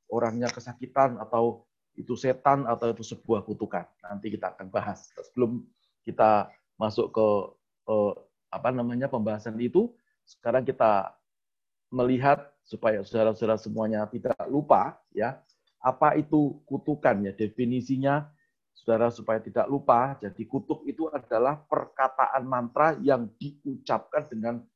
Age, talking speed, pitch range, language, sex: 30-49, 120 wpm, 110-145 Hz, Indonesian, male